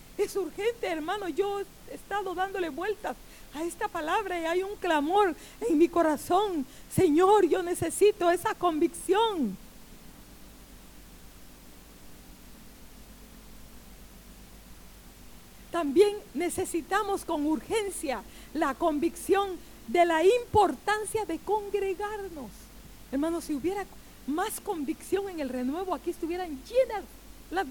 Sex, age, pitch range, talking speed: female, 50-69, 340-415 Hz, 100 wpm